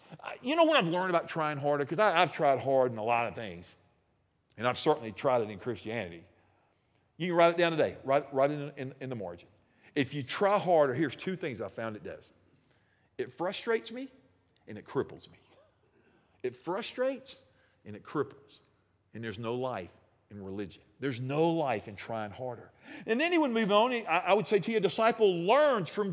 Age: 50-69